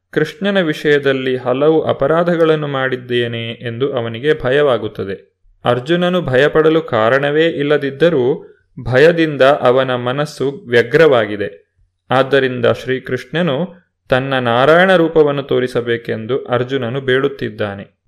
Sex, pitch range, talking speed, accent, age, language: male, 125-155 Hz, 80 wpm, native, 30-49, Kannada